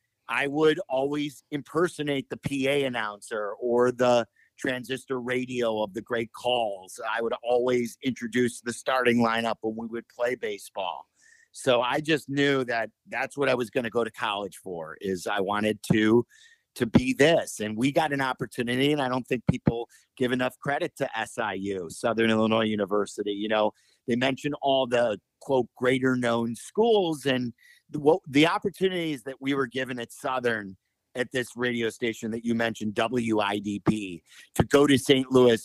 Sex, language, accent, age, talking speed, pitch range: male, English, American, 50-69, 165 wpm, 115-135 Hz